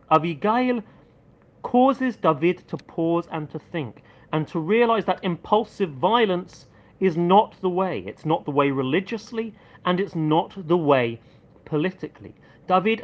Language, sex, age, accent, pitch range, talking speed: English, male, 40-59, British, 140-200 Hz, 140 wpm